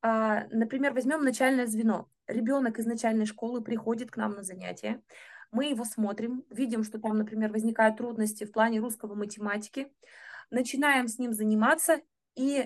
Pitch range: 220-260 Hz